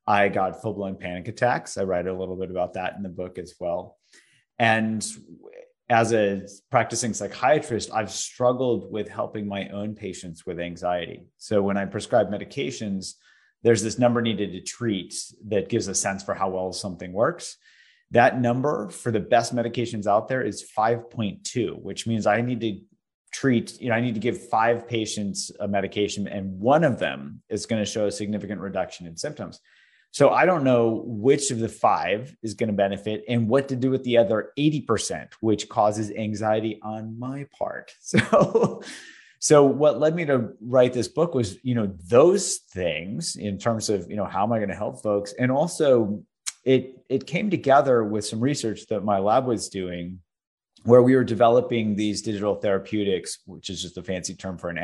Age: 30-49